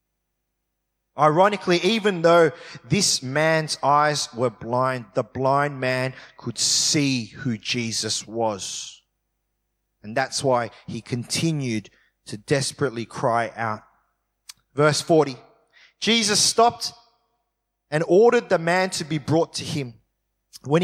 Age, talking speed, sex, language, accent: 30-49, 110 wpm, male, English, Australian